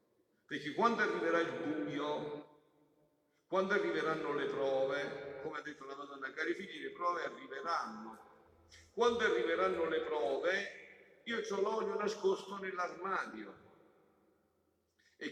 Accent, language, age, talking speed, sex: native, Italian, 50-69, 115 wpm, male